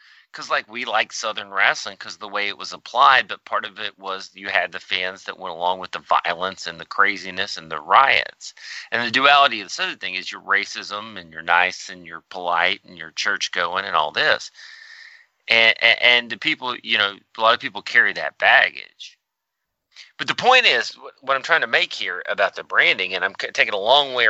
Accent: American